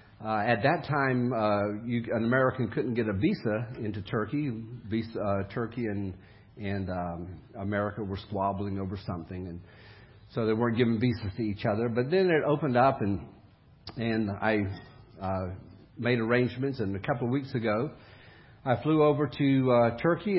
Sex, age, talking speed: male, 50-69, 170 wpm